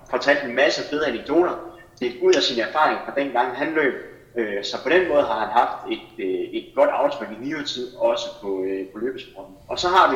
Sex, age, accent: male, 30-49, native